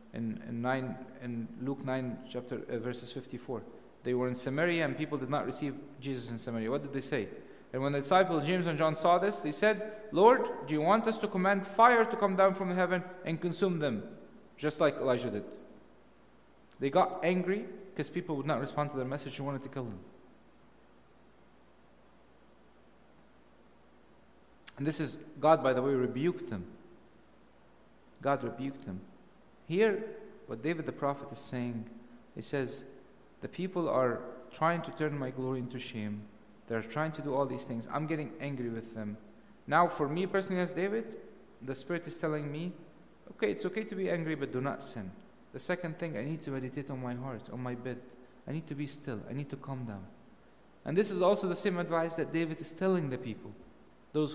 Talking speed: 190 wpm